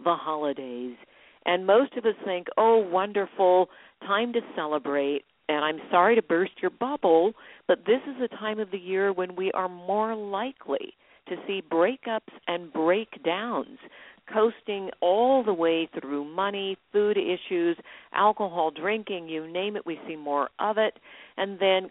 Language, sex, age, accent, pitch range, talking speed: English, female, 50-69, American, 165-220 Hz, 155 wpm